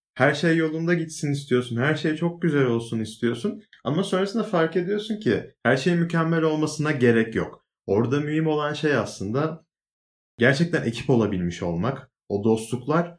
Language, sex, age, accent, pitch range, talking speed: Turkish, male, 30-49, native, 120-175 Hz, 150 wpm